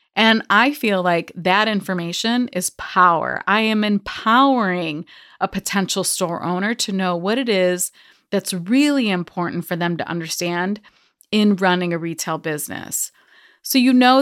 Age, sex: 30-49, female